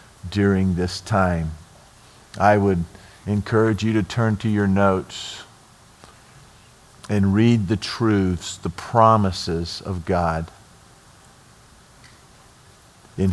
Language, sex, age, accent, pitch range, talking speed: English, male, 50-69, American, 95-115 Hz, 95 wpm